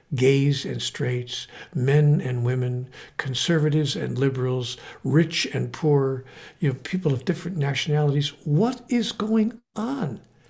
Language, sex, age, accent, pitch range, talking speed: English, male, 60-79, American, 140-190 Hz, 125 wpm